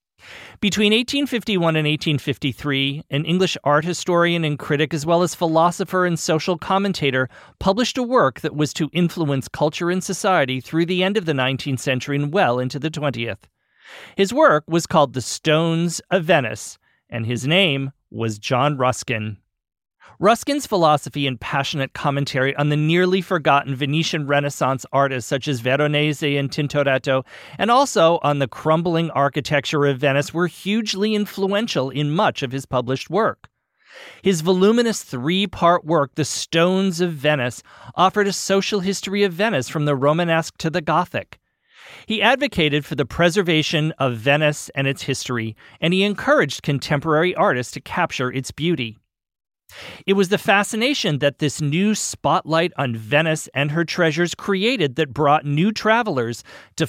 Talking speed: 155 wpm